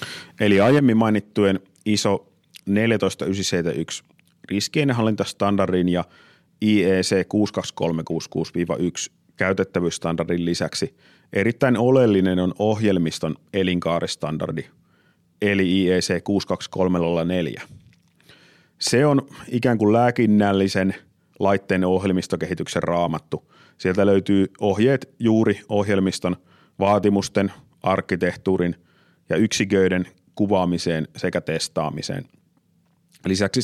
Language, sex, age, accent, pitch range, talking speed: Finnish, male, 30-49, native, 90-105 Hz, 70 wpm